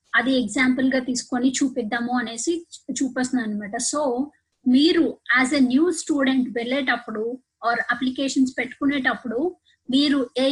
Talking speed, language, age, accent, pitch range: 115 wpm, Telugu, 20-39, native, 245-295 Hz